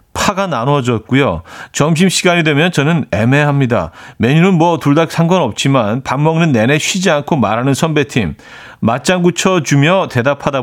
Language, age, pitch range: Korean, 40-59, 120-165 Hz